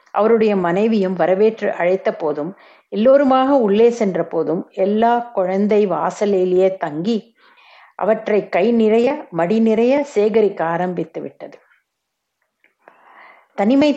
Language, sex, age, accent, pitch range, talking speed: Tamil, female, 60-79, native, 185-235 Hz, 85 wpm